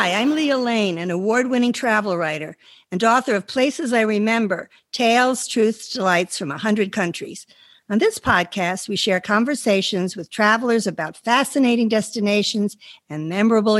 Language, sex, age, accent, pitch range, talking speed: English, female, 60-79, American, 175-215 Hz, 150 wpm